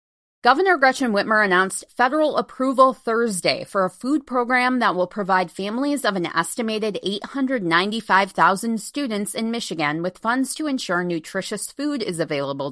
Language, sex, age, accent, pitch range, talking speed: English, female, 20-39, American, 165-245 Hz, 140 wpm